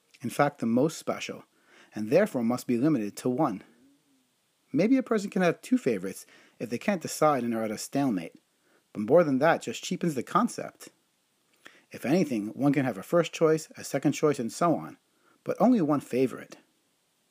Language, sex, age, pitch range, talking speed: English, male, 30-49, 125-170 Hz, 185 wpm